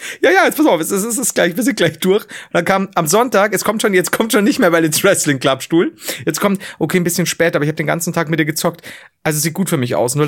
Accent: German